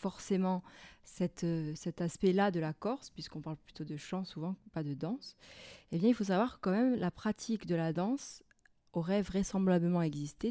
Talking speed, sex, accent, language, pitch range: 185 wpm, female, French, French, 165-210 Hz